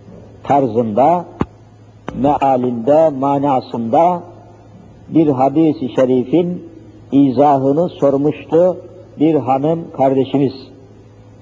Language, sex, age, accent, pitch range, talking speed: Turkish, male, 60-79, native, 110-150 Hz, 60 wpm